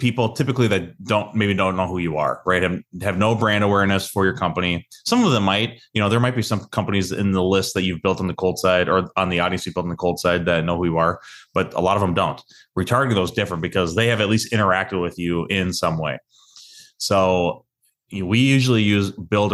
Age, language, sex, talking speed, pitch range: 30-49, English, male, 250 wpm, 90-105 Hz